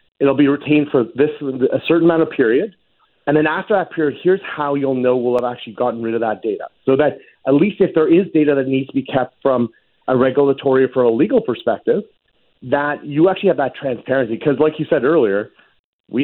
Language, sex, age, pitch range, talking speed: English, male, 40-59, 125-155 Hz, 220 wpm